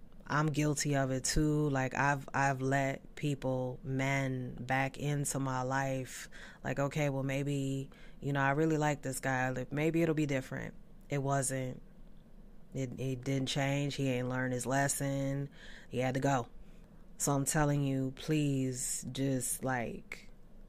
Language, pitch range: English, 130-155 Hz